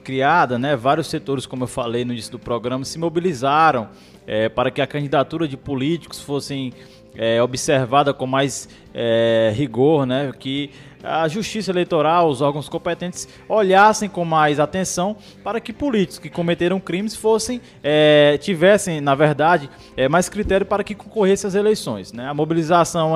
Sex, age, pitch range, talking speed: male, 20-39, 140-190 Hz, 145 wpm